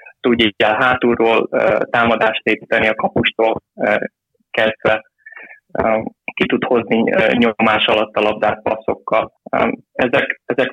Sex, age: male, 20-39